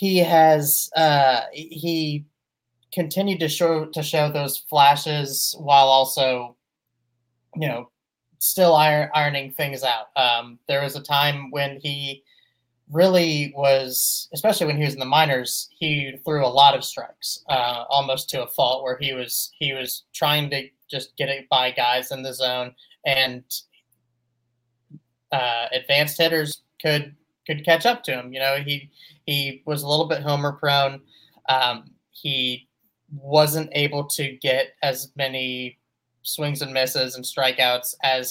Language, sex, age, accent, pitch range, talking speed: English, male, 30-49, American, 130-150 Hz, 150 wpm